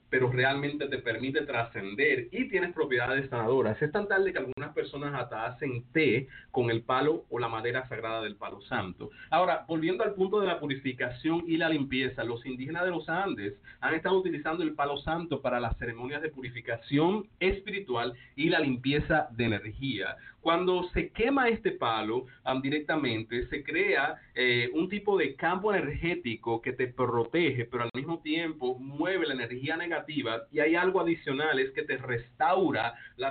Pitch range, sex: 125-165 Hz, male